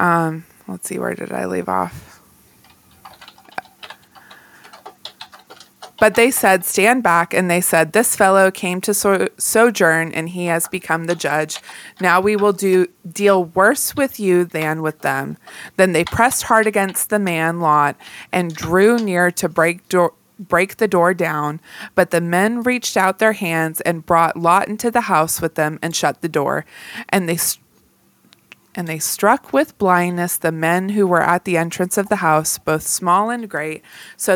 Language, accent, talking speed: English, American, 175 wpm